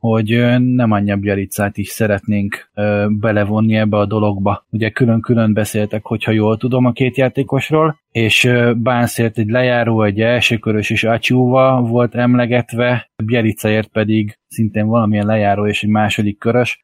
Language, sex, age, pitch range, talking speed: Hungarian, male, 20-39, 105-120 Hz, 145 wpm